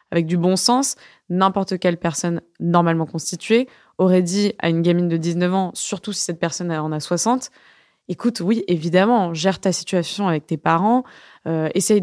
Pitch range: 170-210 Hz